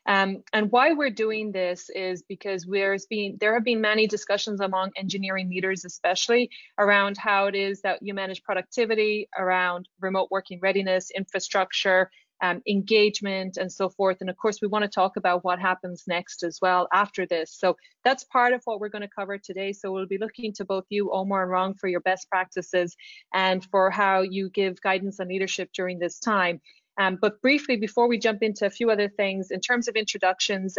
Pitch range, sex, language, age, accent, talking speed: 185-200 Hz, female, English, 30-49, Irish, 200 wpm